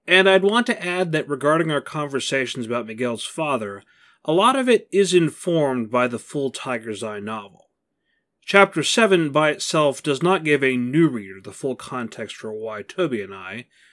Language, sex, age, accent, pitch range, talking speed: English, male, 30-49, American, 120-170 Hz, 180 wpm